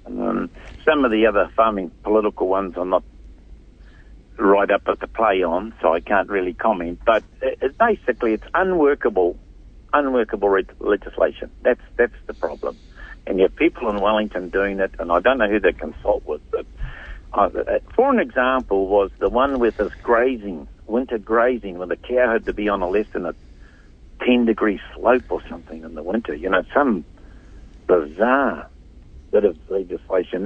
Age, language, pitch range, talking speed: 60-79, English, 85-130 Hz, 175 wpm